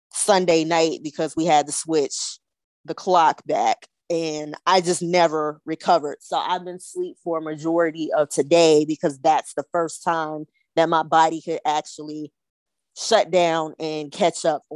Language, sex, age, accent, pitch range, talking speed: English, female, 20-39, American, 160-190 Hz, 160 wpm